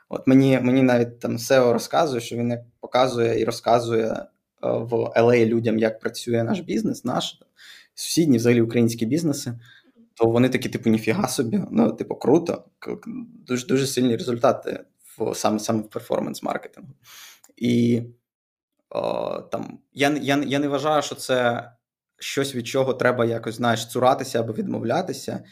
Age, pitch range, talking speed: 20-39, 115-130 Hz, 150 wpm